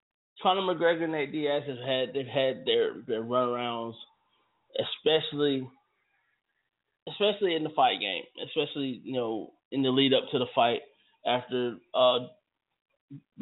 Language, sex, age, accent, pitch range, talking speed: English, male, 20-39, American, 130-170 Hz, 135 wpm